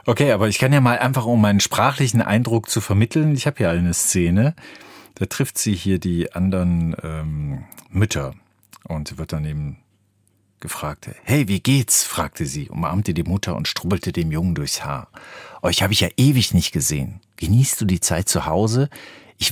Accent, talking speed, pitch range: German, 180 wpm, 80-110 Hz